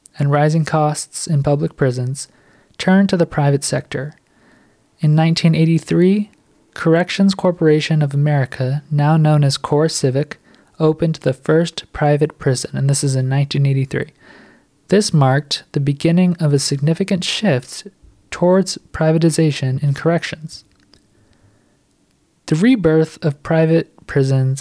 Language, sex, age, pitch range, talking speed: English, male, 20-39, 140-175 Hz, 115 wpm